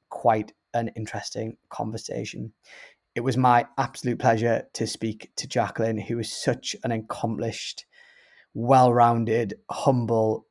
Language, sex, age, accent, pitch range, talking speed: English, male, 20-39, British, 110-125 Hz, 115 wpm